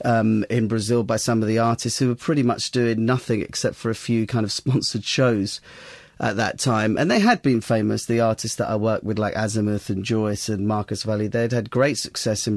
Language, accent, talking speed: English, British, 230 wpm